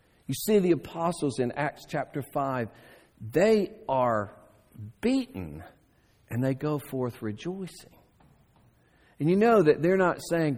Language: English